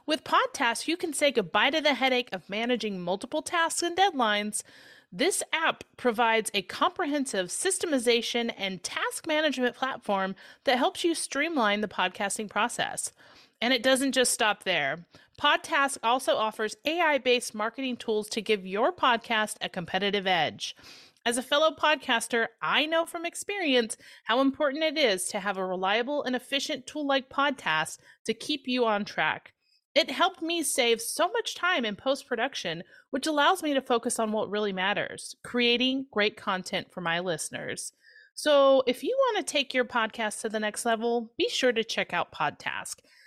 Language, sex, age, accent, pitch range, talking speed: English, female, 30-49, American, 215-300 Hz, 165 wpm